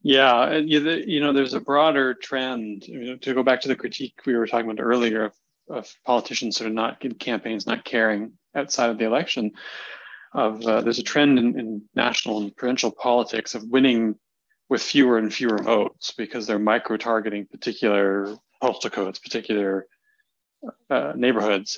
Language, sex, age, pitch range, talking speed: English, male, 30-49, 110-125 Hz, 175 wpm